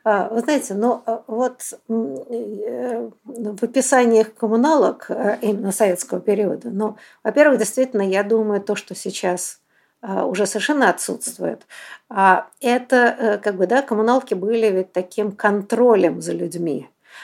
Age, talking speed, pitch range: 50-69, 110 wpm, 180-225 Hz